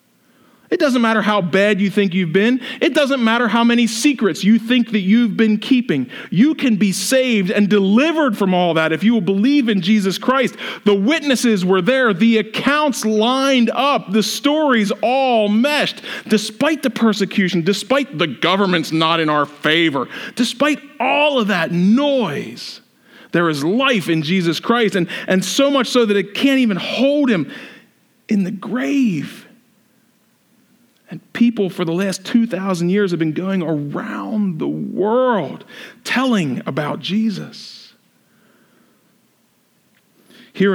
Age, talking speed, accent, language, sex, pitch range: 40-59, 150 wpm, American, English, male, 165-240 Hz